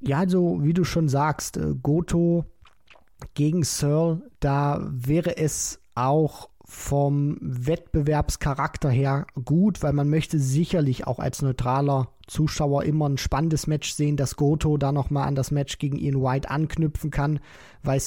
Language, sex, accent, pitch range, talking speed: German, male, German, 140-165 Hz, 145 wpm